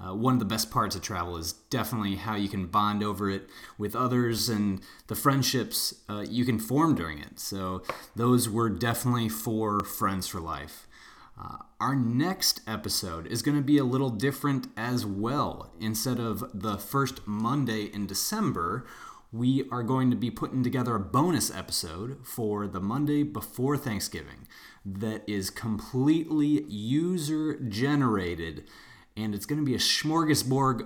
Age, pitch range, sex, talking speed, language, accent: 30-49, 105-130 Hz, male, 160 wpm, English, American